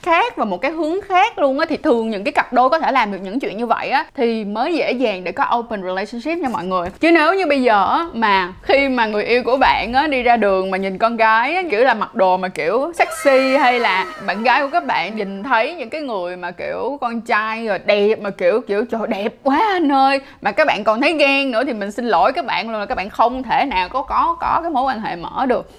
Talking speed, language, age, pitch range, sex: 270 wpm, Vietnamese, 20-39, 200-285 Hz, female